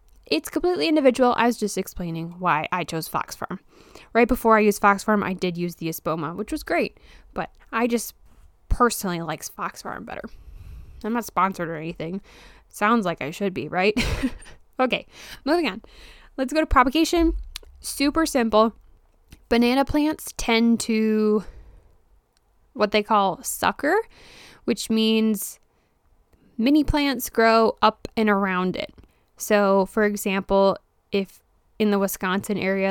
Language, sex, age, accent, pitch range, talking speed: English, female, 10-29, American, 195-255 Hz, 145 wpm